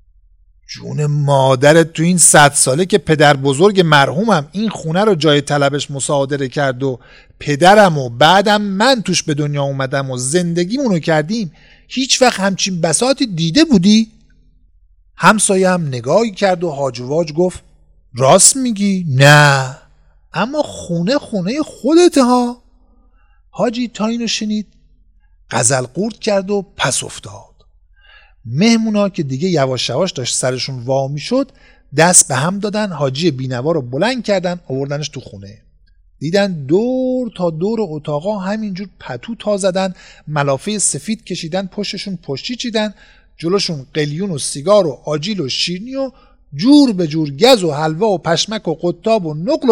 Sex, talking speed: male, 140 wpm